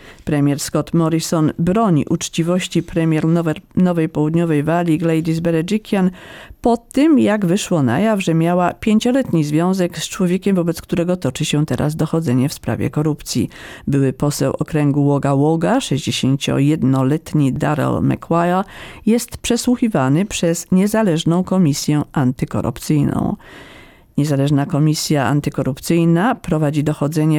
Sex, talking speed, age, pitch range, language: female, 110 wpm, 50-69, 150-185 Hz, Polish